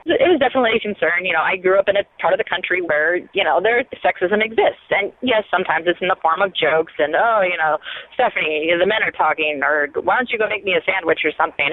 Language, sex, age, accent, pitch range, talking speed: English, female, 30-49, American, 165-230 Hz, 270 wpm